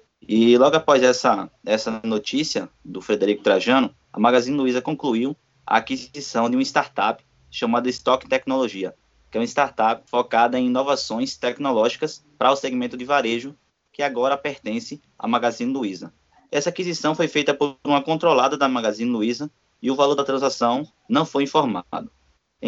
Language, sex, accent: Portuguese, male, Brazilian